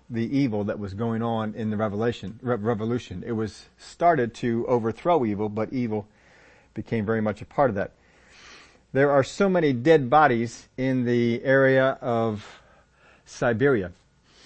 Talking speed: 150 wpm